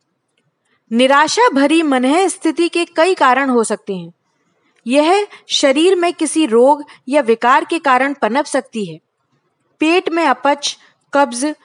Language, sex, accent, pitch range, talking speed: Hindi, female, native, 235-300 Hz, 135 wpm